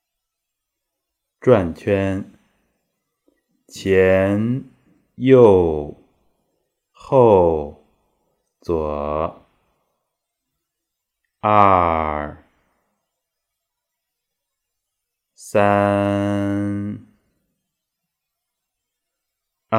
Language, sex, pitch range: Chinese, male, 90-120 Hz